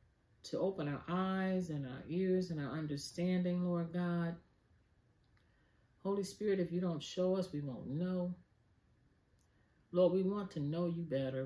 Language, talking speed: English, 150 wpm